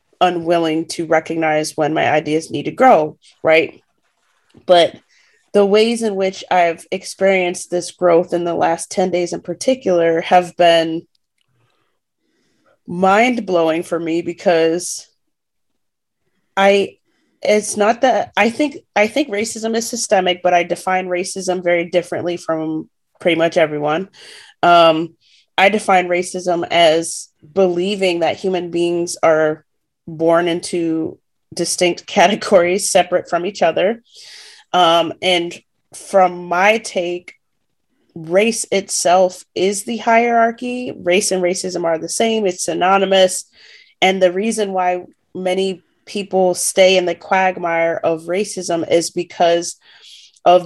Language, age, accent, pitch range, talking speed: English, 30-49, American, 170-190 Hz, 125 wpm